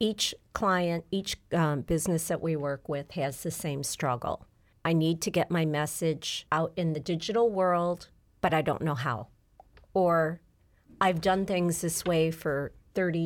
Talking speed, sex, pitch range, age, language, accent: 165 wpm, female, 155-180 Hz, 40-59, English, American